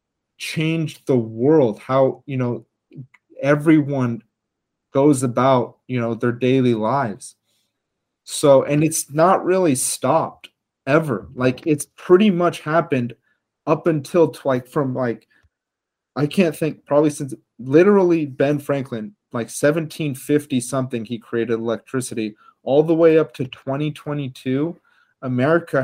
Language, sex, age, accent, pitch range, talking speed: English, male, 30-49, American, 125-160 Hz, 120 wpm